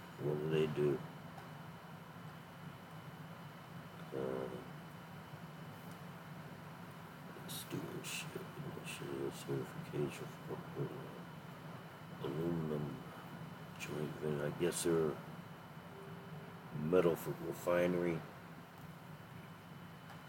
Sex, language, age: male, English, 60-79